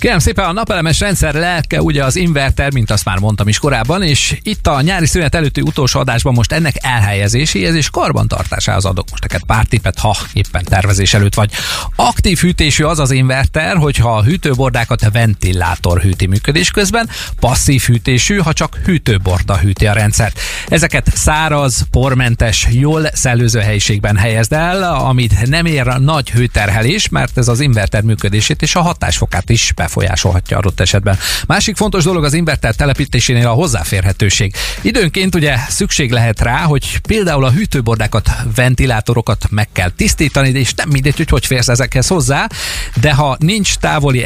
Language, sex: Hungarian, male